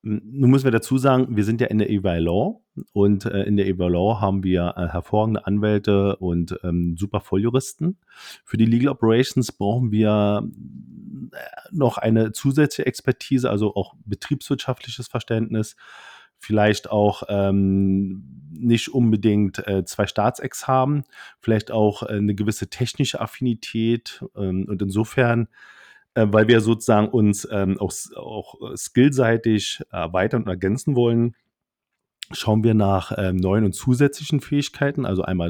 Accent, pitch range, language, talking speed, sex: German, 95-125 Hz, German, 120 wpm, male